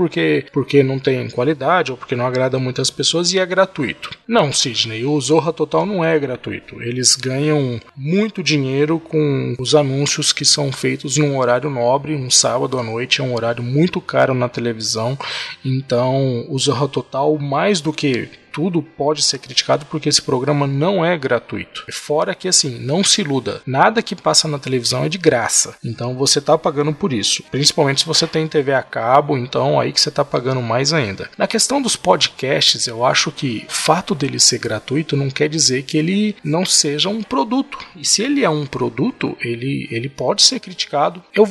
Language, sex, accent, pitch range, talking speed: Portuguese, male, Brazilian, 130-160 Hz, 190 wpm